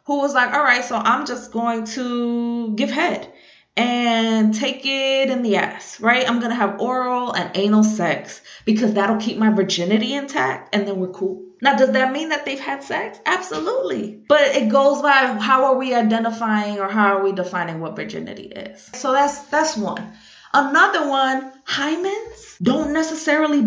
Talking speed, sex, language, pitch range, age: 180 wpm, female, English, 215-270 Hz, 20-39